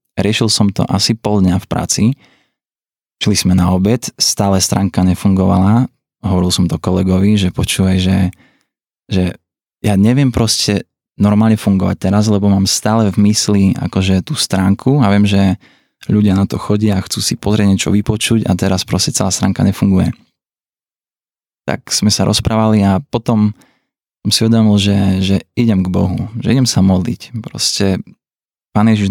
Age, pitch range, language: 20-39, 95-110 Hz, Slovak